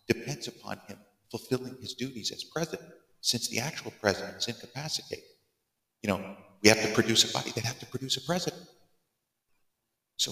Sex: male